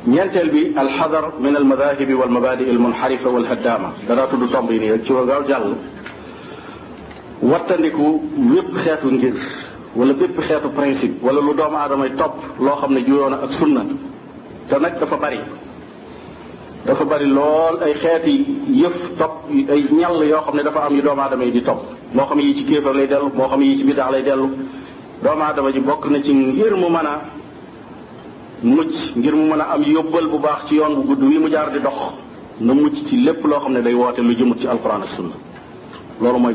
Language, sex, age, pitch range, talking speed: French, male, 50-69, 130-155 Hz, 95 wpm